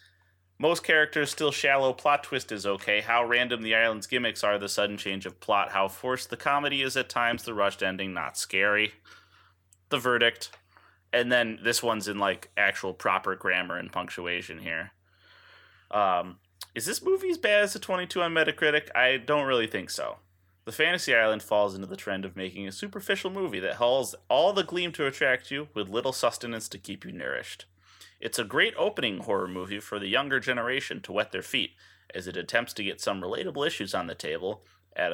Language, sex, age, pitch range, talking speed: English, male, 30-49, 95-135 Hz, 195 wpm